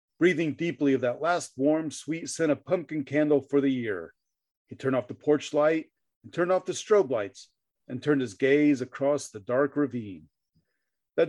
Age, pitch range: 40-59, 135-170 Hz